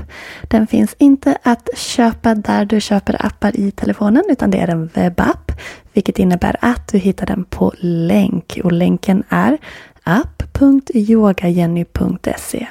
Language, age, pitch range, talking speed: Swedish, 20-39, 185-240 Hz, 130 wpm